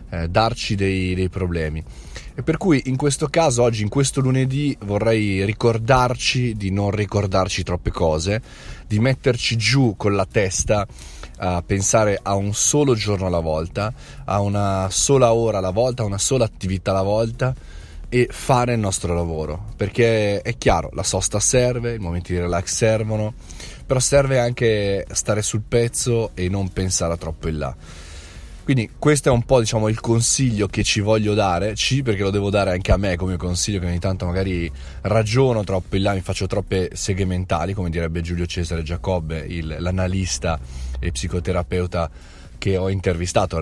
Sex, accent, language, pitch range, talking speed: male, native, Italian, 90-115 Hz, 170 wpm